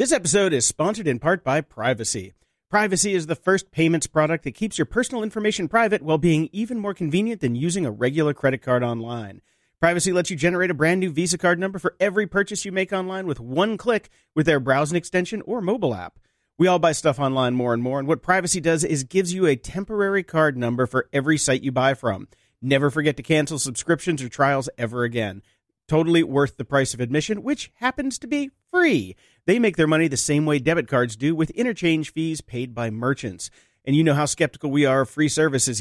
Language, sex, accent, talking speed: English, male, American, 215 wpm